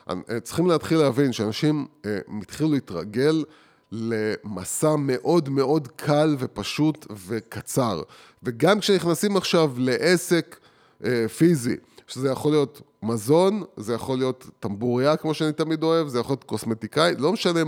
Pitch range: 130-175 Hz